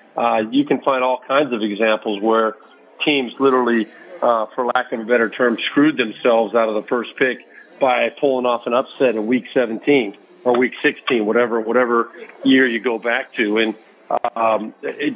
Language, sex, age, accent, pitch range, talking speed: English, male, 50-69, American, 120-160 Hz, 180 wpm